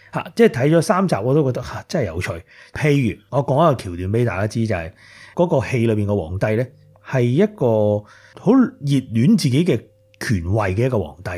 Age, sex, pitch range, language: 30-49, male, 100-135 Hz, Chinese